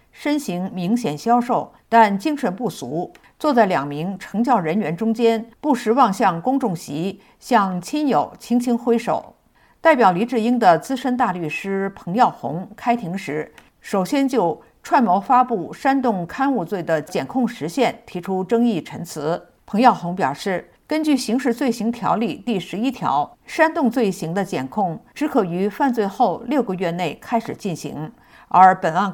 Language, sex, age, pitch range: Chinese, female, 50-69, 190-245 Hz